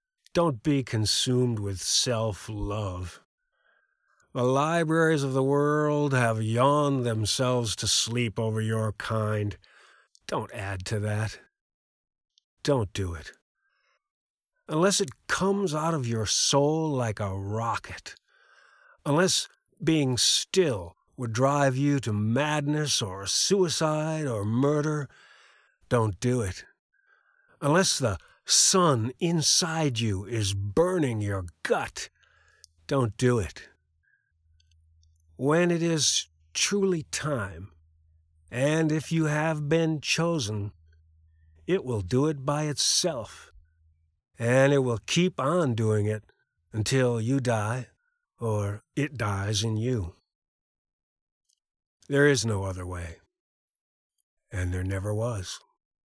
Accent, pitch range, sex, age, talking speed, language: American, 100-150 Hz, male, 50-69, 110 wpm, English